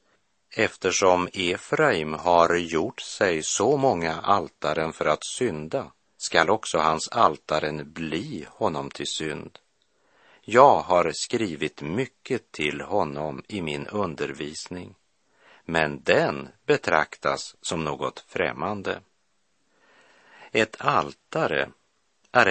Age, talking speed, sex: 50-69, 100 wpm, male